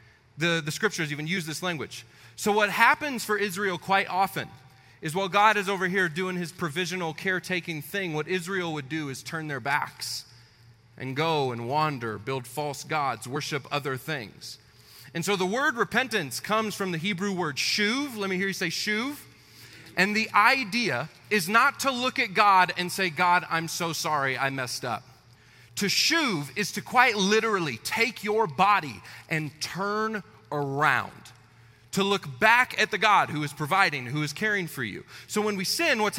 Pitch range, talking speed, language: 125-190 Hz, 180 wpm, English